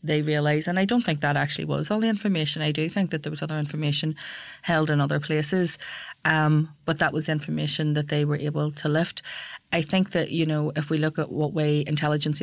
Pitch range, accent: 150-165 Hz, Irish